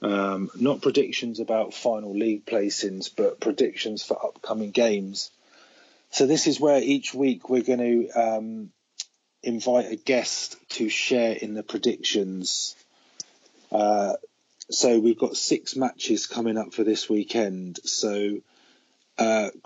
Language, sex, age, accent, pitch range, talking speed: English, male, 30-49, British, 105-125 Hz, 130 wpm